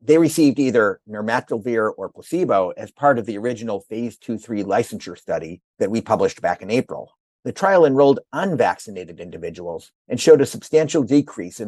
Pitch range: 105-145 Hz